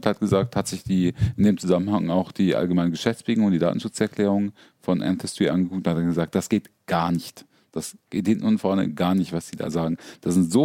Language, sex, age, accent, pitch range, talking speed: German, male, 40-59, German, 90-135 Hz, 220 wpm